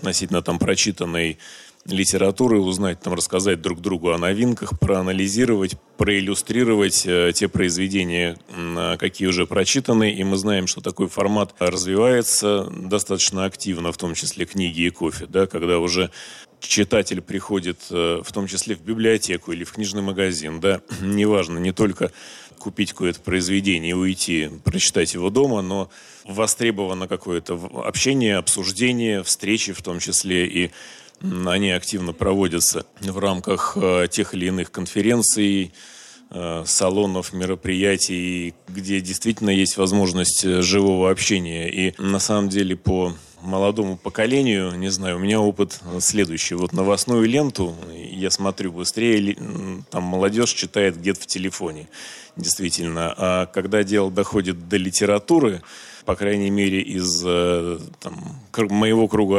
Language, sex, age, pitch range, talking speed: Russian, male, 30-49, 90-105 Hz, 125 wpm